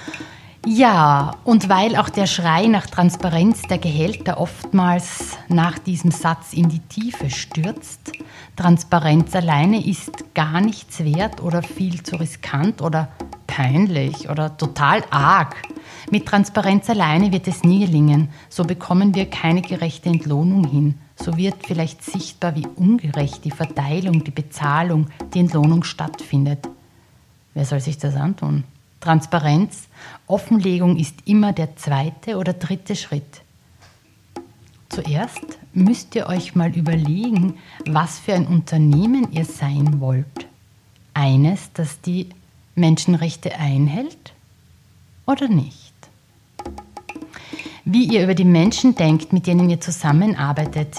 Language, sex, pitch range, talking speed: German, female, 150-185 Hz, 120 wpm